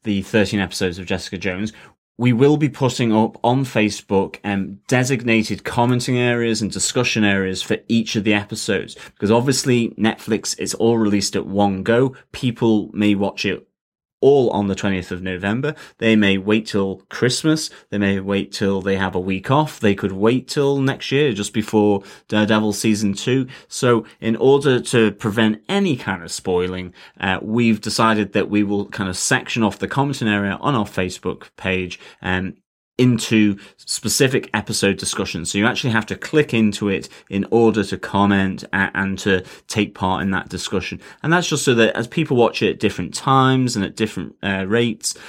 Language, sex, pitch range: English, male, 95-120 Hz